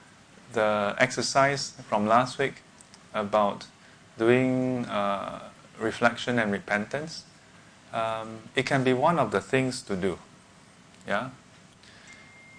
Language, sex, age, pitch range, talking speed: English, male, 20-39, 110-140 Hz, 105 wpm